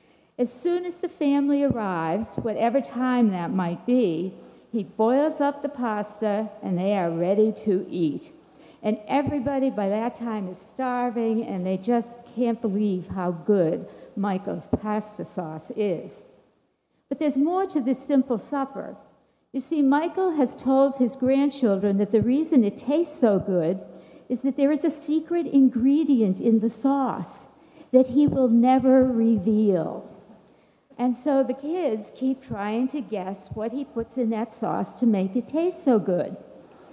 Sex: female